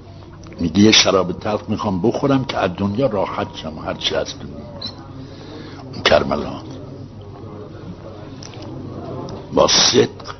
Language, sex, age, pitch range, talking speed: Persian, male, 60-79, 90-120 Hz, 90 wpm